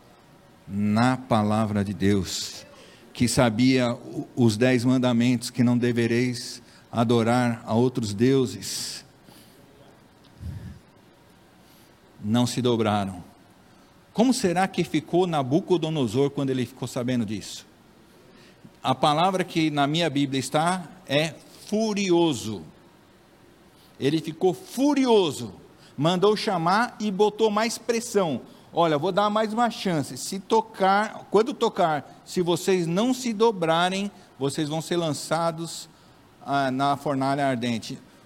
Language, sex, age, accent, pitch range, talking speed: Portuguese, male, 50-69, Brazilian, 130-185 Hz, 110 wpm